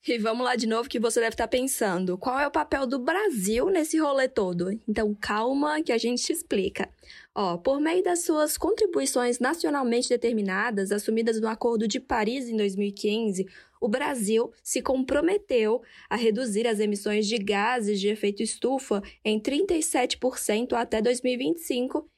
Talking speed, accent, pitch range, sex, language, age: 155 wpm, Brazilian, 220-275 Hz, female, Portuguese, 10-29